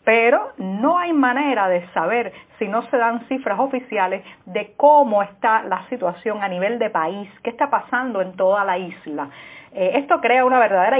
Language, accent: Spanish, American